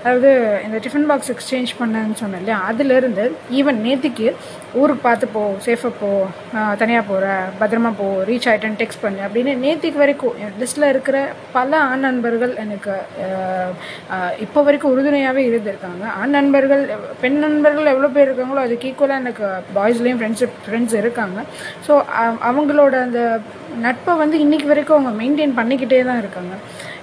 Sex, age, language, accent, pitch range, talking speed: female, 20-39, Tamil, native, 210-275 Hz, 140 wpm